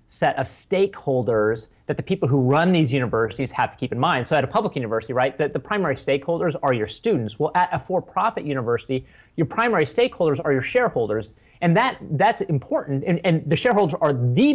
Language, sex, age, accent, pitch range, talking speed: English, male, 30-49, American, 130-180 Hz, 200 wpm